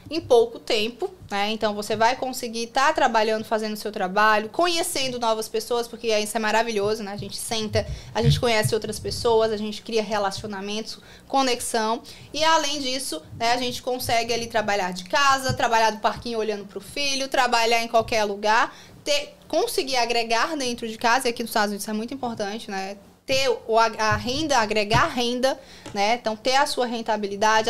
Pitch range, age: 215-250 Hz, 20-39